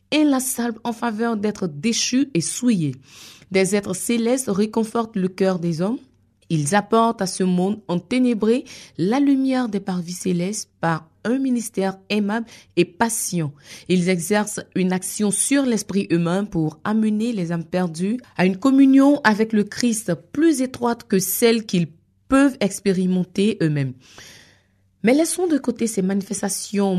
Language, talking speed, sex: French, 155 wpm, female